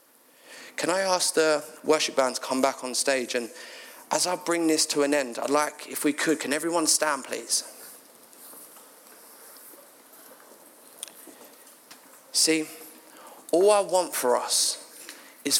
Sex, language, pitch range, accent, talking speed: male, English, 150-175 Hz, British, 135 wpm